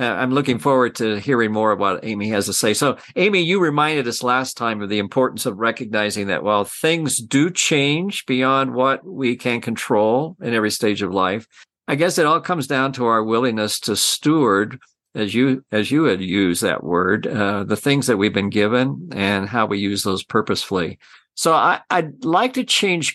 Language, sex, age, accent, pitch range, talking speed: English, male, 50-69, American, 105-135 Hz, 195 wpm